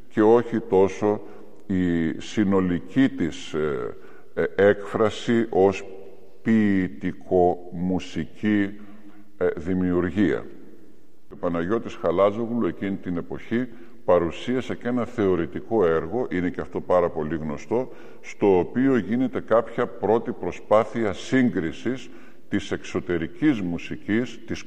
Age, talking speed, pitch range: 50-69, 100 wpm, 90-115 Hz